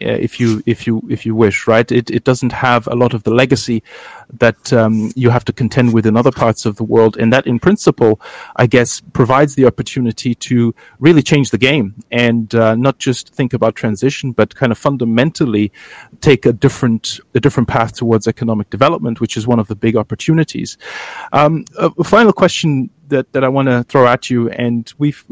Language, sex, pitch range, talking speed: English, male, 115-135 Hz, 200 wpm